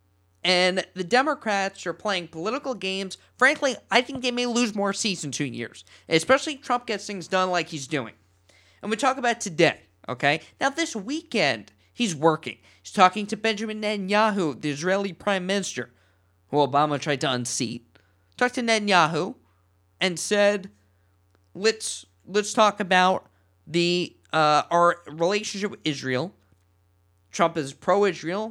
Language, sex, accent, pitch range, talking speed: English, male, American, 120-195 Hz, 145 wpm